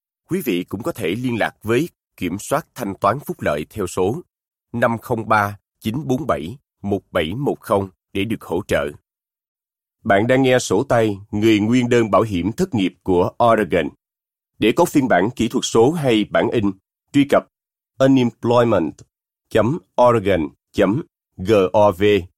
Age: 30-49